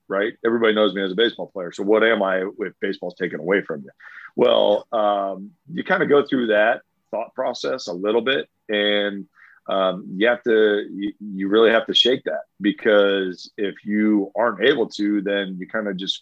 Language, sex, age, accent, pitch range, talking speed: English, male, 40-59, American, 95-110 Hz, 200 wpm